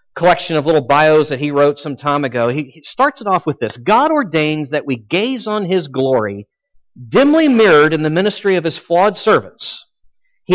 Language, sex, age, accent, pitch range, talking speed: English, male, 40-59, American, 165-250 Hz, 195 wpm